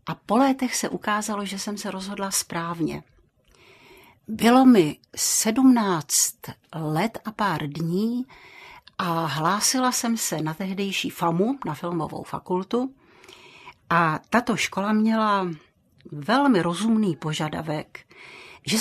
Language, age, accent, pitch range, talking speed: Czech, 60-79, native, 165-225 Hz, 110 wpm